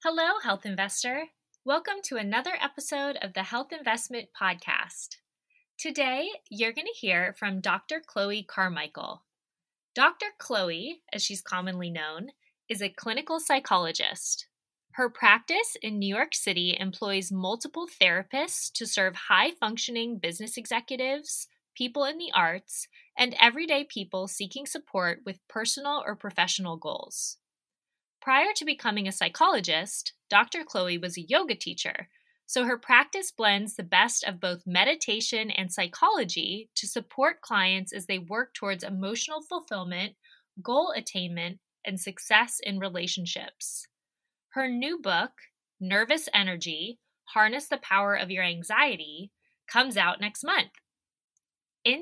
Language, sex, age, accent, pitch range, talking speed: English, female, 20-39, American, 190-295 Hz, 130 wpm